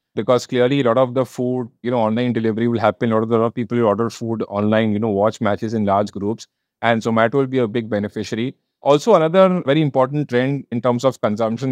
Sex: male